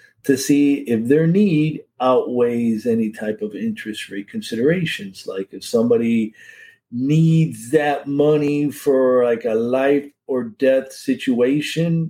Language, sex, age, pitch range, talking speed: English, male, 50-69, 110-160 Hz, 125 wpm